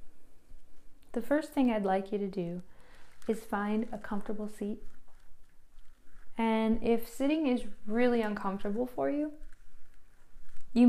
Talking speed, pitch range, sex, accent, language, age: 120 wpm, 205-250 Hz, female, American, English, 10-29